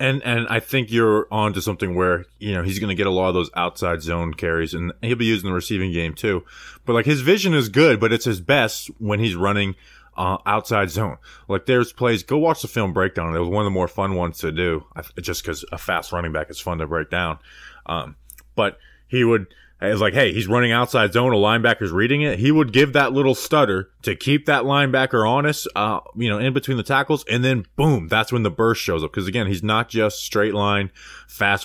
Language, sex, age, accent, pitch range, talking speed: English, male, 20-39, American, 90-120 Hz, 235 wpm